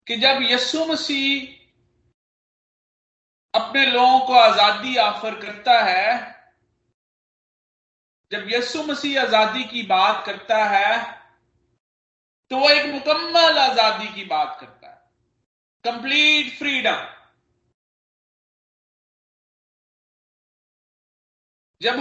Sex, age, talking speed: male, 40-59, 85 wpm